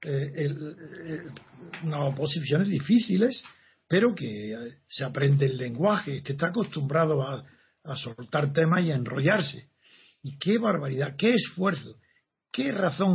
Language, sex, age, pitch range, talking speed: Spanish, male, 60-79, 140-190 Hz, 130 wpm